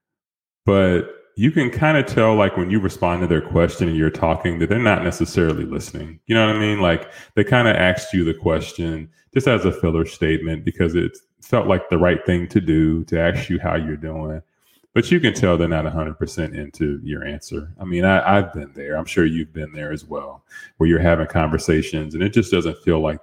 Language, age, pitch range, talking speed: English, 30-49, 80-90 Hz, 225 wpm